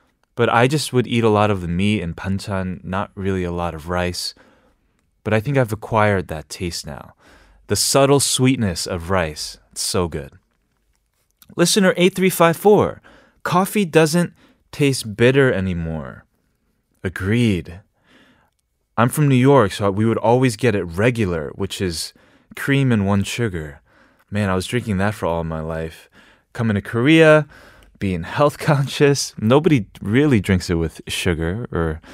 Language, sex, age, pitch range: Korean, male, 20-39, 90-135 Hz